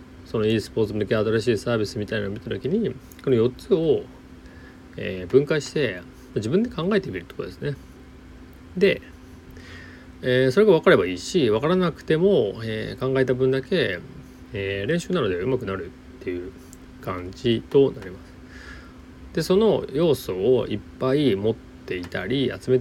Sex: male